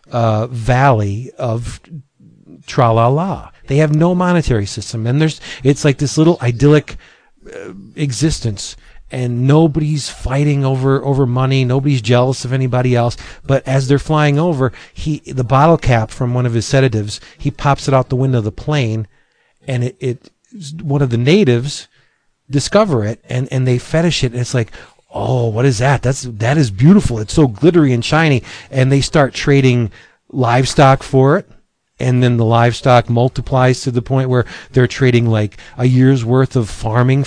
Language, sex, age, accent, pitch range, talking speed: English, male, 40-59, American, 115-150 Hz, 170 wpm